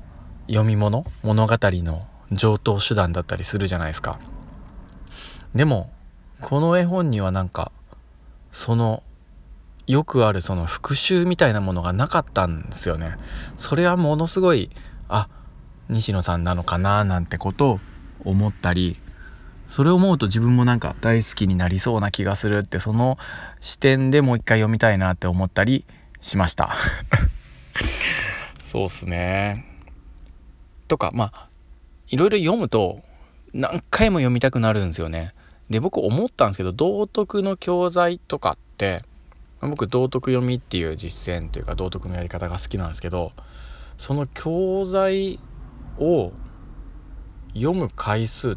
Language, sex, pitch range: Japanese, male, 85-120 Hz